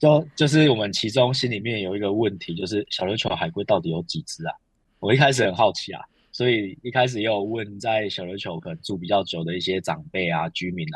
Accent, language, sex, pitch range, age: native, Chinese, male, 90-120 Hz, 20-39